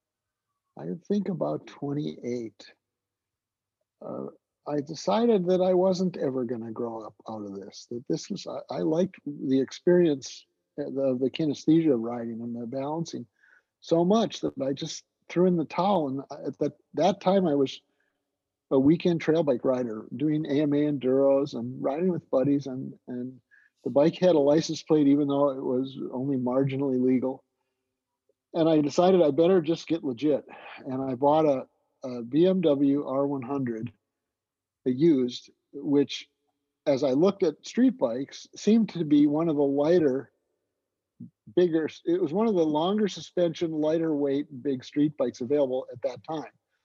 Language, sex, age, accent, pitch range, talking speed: English, male, 50-69, American, 130-165 Hz, 165 wpm